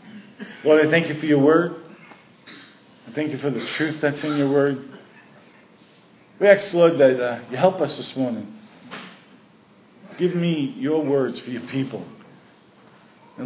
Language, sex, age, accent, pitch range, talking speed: English, male, 50-69, American, 130-170 Hz, 155 wpm